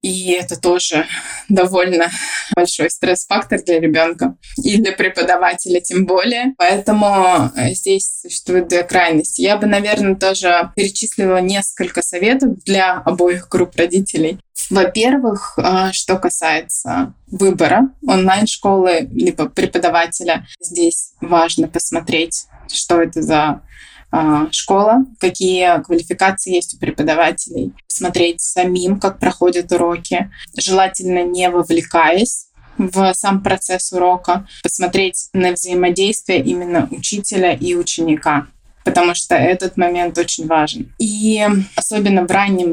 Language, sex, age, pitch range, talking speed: Russian, female, 20-39, 175-200 Hz, 110 wpm